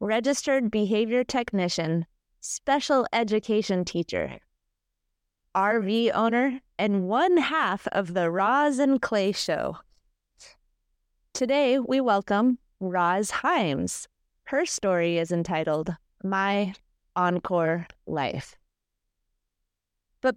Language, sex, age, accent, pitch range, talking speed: English, female, 30-49, American, 170-230 Hz, 90 wpm